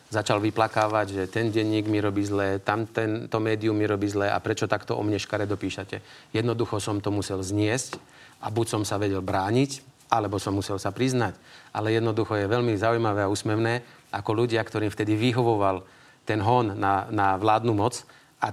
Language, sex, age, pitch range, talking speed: Slovak, male, 30-49, 100-115 Hz, 180 wpm